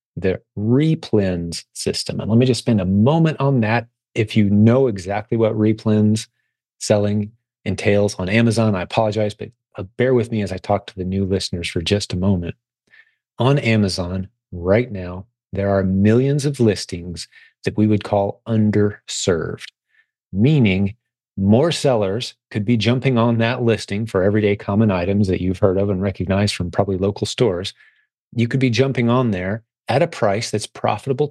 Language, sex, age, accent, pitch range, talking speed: English, male, 30-49, American, 95-120 Hz, 165 wpm